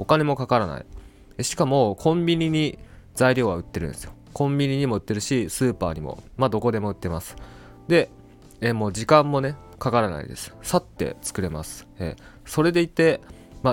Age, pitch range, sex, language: 20-39, 85-130 Hz, male, Japanese